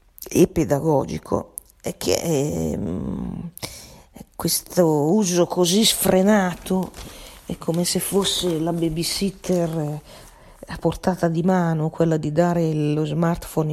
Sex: female